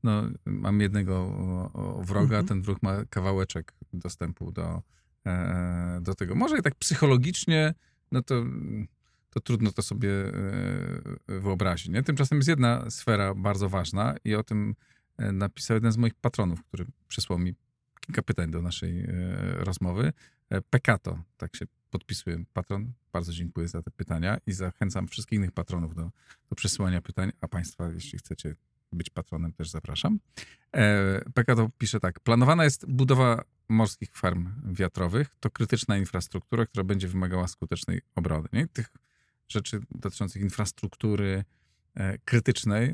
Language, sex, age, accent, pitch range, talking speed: Polish, male, 40-59, native, 90-120 Hz, 135 wpm